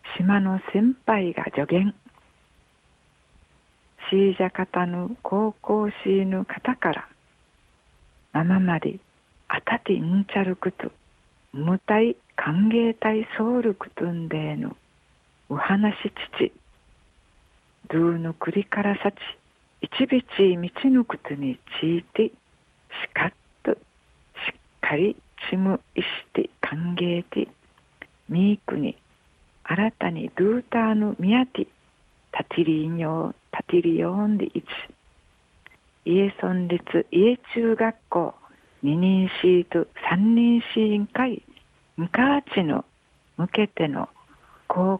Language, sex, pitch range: Japanese, female, 175-220 Hz